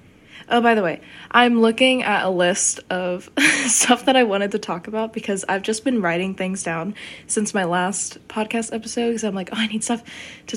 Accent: American